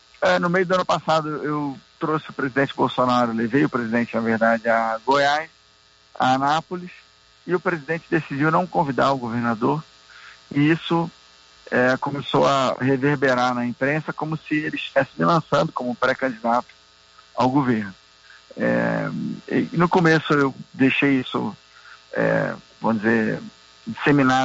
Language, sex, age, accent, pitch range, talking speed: Portuguese, male, 50-69, Brazilian, 115-160 Hz, 140 wpm